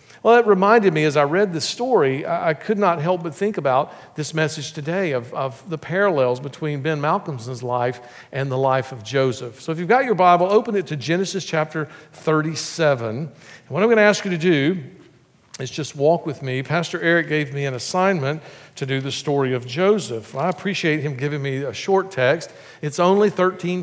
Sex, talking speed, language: male, 205 wpm, English